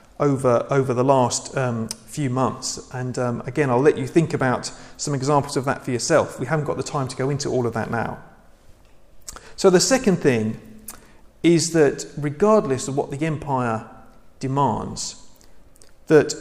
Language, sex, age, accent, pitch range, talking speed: English, male, 40-59, British, 130-175 Hz, 170 wpm